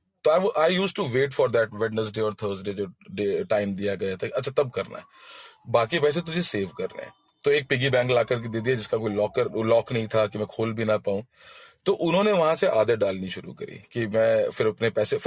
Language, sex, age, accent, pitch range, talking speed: Hindi, male, 30-49, native, 110-160 Hz, 210 wpm